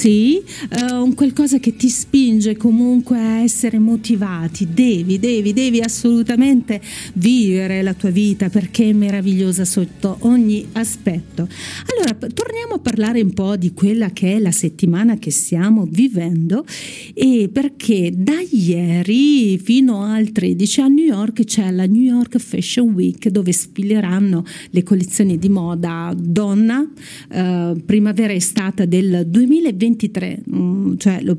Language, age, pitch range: Italian, 40-59, 180-225 Hz